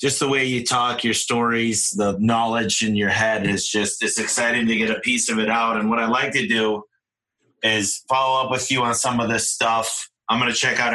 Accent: American